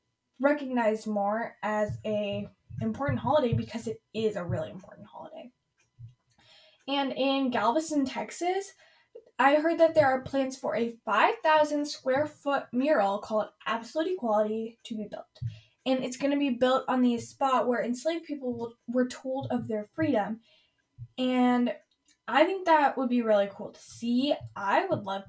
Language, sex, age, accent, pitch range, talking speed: English, female, 10-29, American, 210-300 Hz, 155 wpm